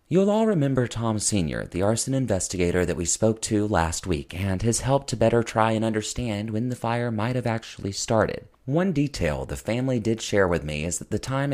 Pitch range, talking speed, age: 90-120 Hz, 215 wpm, 30-49